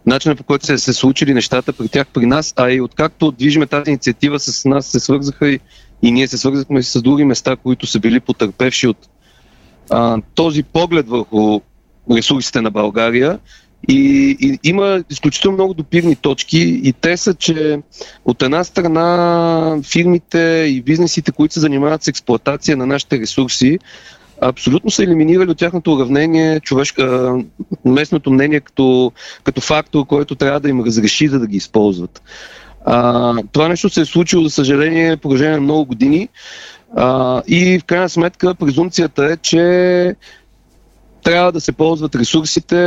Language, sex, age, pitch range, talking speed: Bulgarian, male, 40-59, 130-165 Hz, 155 wpm